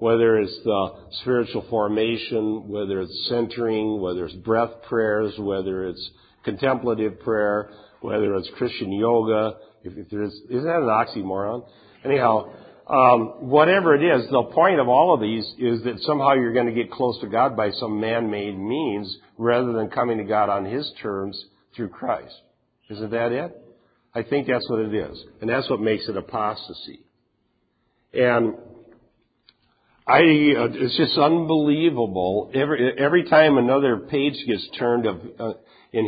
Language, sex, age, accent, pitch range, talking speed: English, male, 50-69, American, 105-130 Hz, 150 wpm